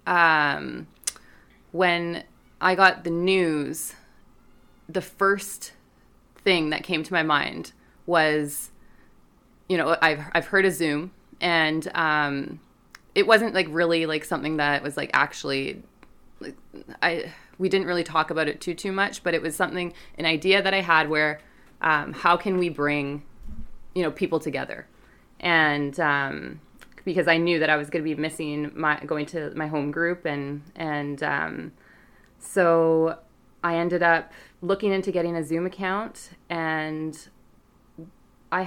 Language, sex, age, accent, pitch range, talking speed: English, female, 20-39, American, 150-180 Hz, 150 wpm